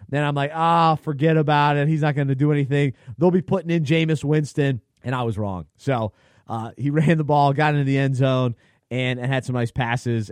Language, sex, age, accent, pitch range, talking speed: English, male, 30-49, American, 120-165 Hz, 235 wpm